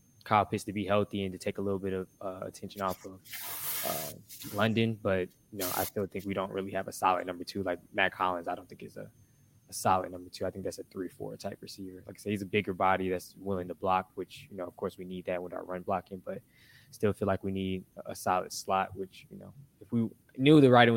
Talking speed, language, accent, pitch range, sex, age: 265 wpm, English, American, 95-105 Hz, male, 20-39